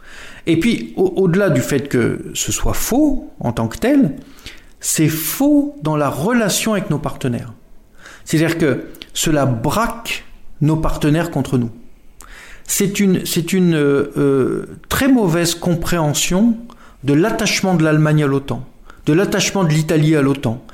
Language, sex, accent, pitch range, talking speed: French, male, French, 135-185 Hz, 140 wpm